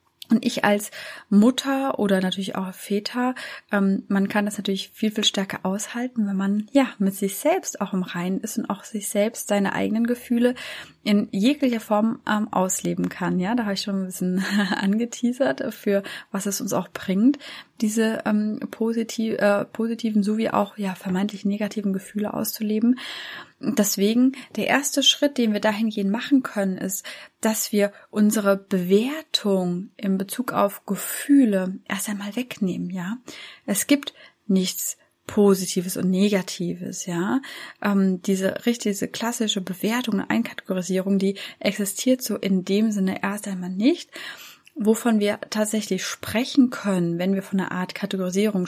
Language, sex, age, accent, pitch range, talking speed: German, female, 20-39, German, 195-235 Hz, 150 wpm